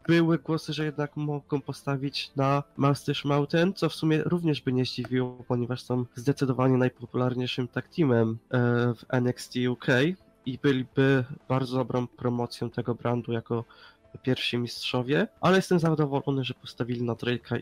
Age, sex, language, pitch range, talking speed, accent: 20-39, male, Polish, 125-150 Hz, 140 wpm, native